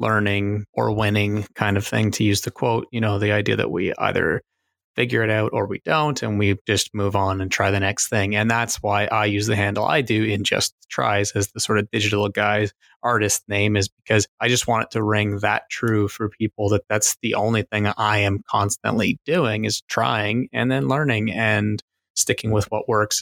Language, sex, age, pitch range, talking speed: English, male, 20-39, 105-115 Hz, 215 wpm